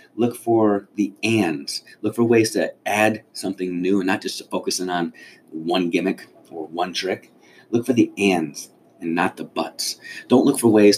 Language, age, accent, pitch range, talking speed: English, 30-49, American, 95-105 Hz, 190 wpm